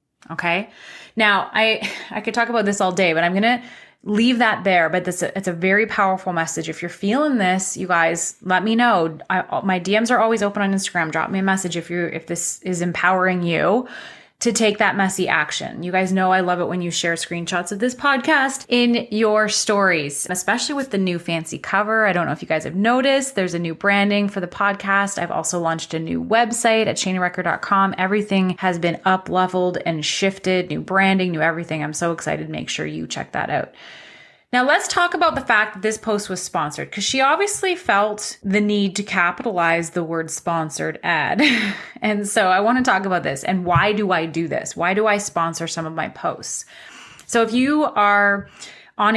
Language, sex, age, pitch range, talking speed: English, female, 20-39, 170-215 Hz, 210 wpm